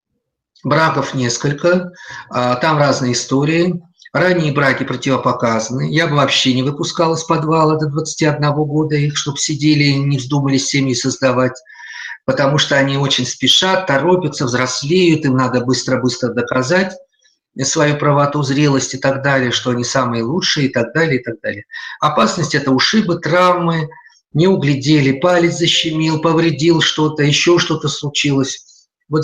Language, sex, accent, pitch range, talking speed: Russian, male, native, 135-170 Hz, 140 wpm